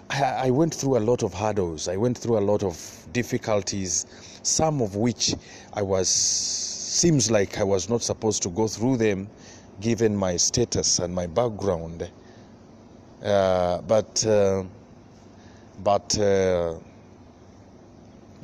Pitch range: 95-115 Hz